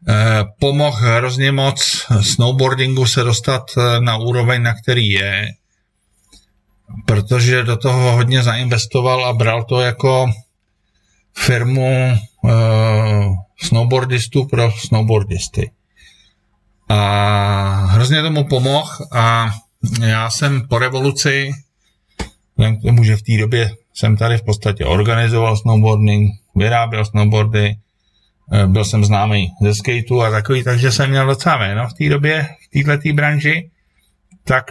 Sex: male